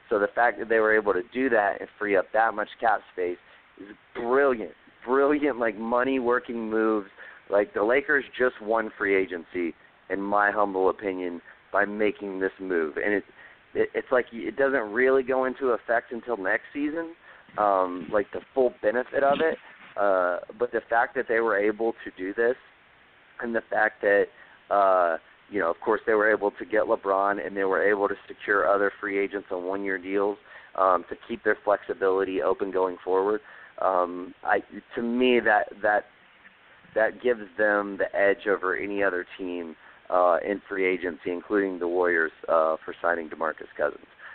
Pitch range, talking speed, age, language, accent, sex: 95-120 Hz, 180 wpm, 30-49, English, American, male